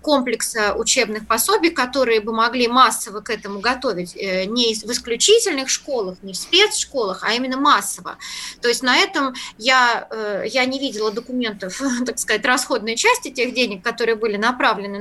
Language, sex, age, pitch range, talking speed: Russian, female, 20-39, 215-270 Hz, 150 wpm